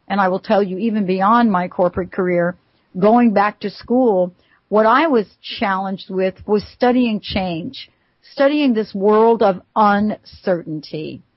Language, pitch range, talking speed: English, 185-235 Hz, 145 wpm